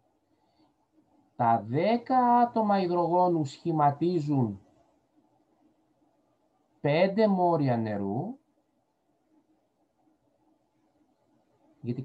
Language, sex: Greek, male